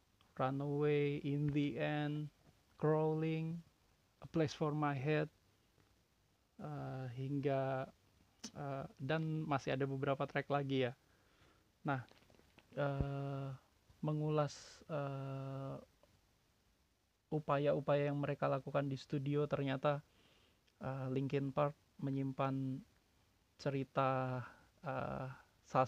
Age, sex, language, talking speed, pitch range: 20-39, male, Indonesian, 90 wpm, 125-145 Hz